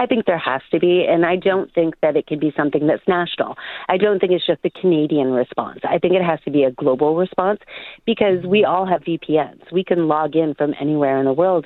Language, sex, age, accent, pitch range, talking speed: English, female, 40-59, American, 145-180 Hz, 245 wpm